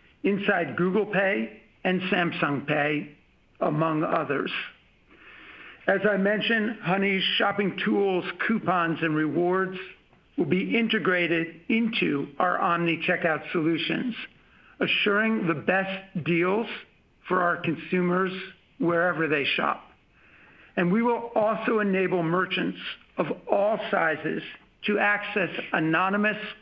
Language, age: English, 60-79